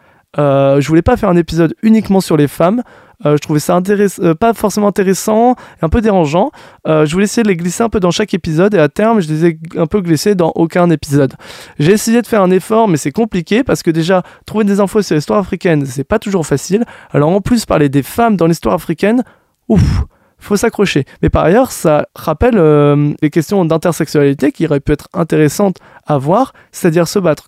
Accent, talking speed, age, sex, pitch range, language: French, 220 wpm, 20-39, male, 155-205 Hz, French